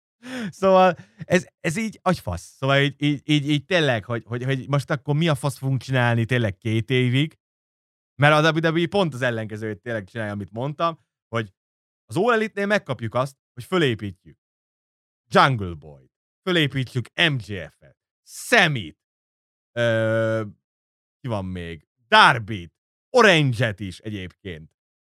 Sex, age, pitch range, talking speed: male, 30-49, 110-155 Hz, 135 wpm